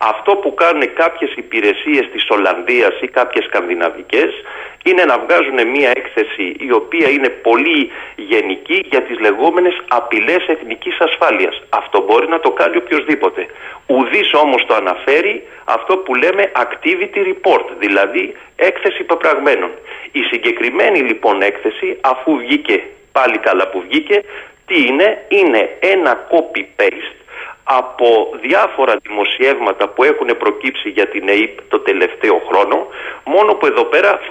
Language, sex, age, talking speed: Greek, male, 40-59, 135 wpm